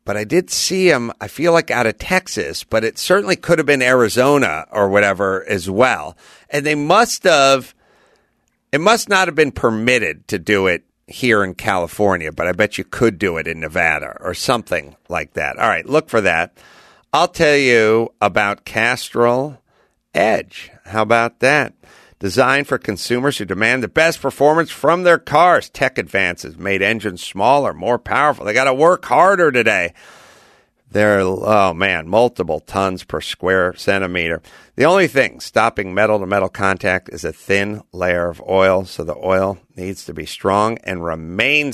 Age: 50-69